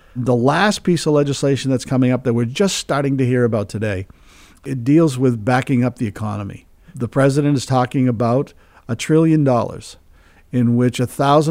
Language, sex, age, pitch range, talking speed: English, male, 50-69, 115-145 Hz, 175 wpm